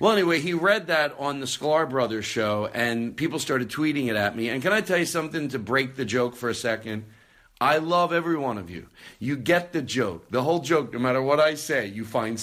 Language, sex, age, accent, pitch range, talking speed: English, male, 50-69, American, 110-160 Hz, 240 wpm